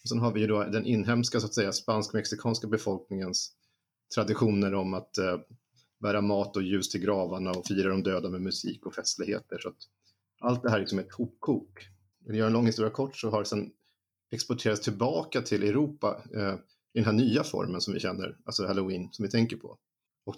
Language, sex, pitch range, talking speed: Swedish, male, 95-120 Hz, 205 wpm